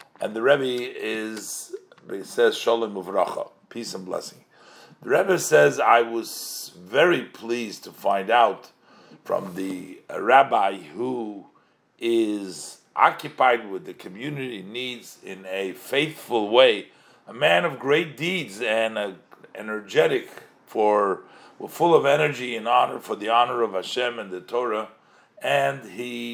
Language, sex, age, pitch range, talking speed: English, male, 50-69, 100-125 Hz, 130 wpm